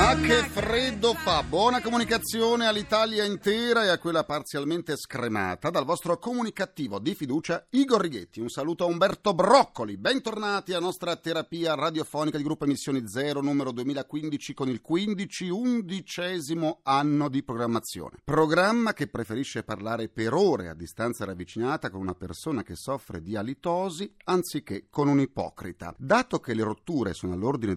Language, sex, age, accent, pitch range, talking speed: Italian, male, 40-59, native, 115-180 Hz, 150 wpm